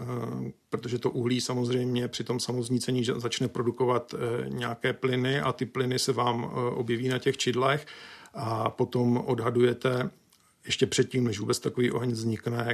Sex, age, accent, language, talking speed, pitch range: male, 50-69, native, Czech, 140 wpm, 120-130 Hz